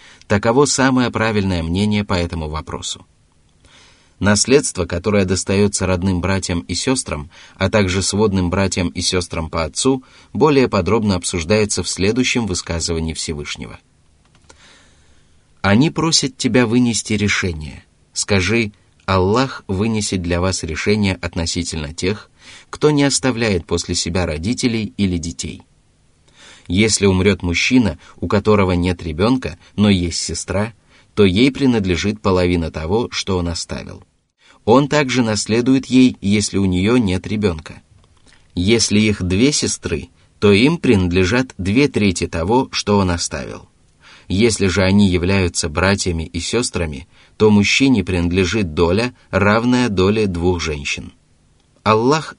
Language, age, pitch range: Russian, 20-39, 85-110 Hz